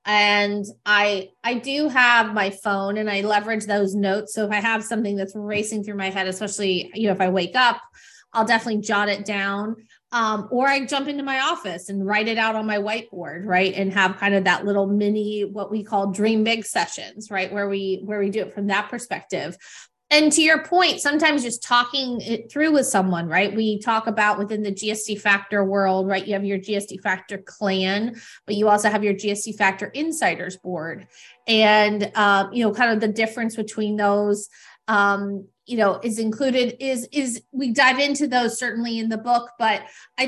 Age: 20-39